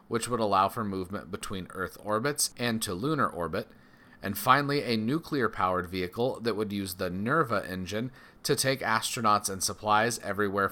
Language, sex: English, male